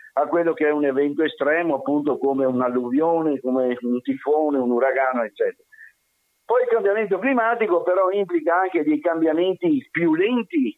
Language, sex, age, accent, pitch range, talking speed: Italian, male, 50-69, native, 140-190 Hz, 150 wpm